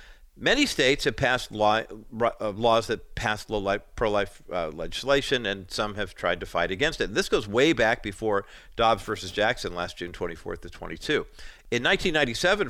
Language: English